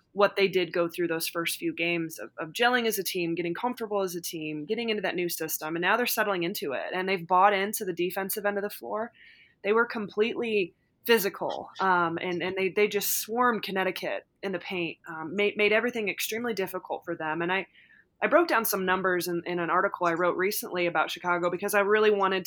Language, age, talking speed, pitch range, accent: English, 20-39, 225 wpm, 175-205 Hz, American